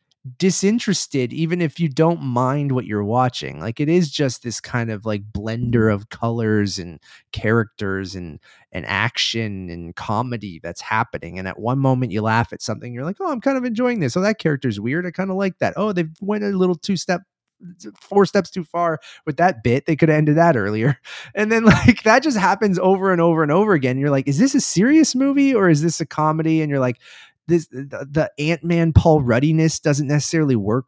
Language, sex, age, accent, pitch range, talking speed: English, male, 20-39, American, 120-165 Hz, 210 wpm